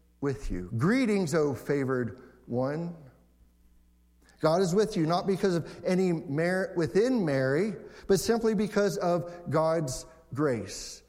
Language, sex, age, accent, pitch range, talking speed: English, male, 50-69, American, 130-180 Hz, 130 wpm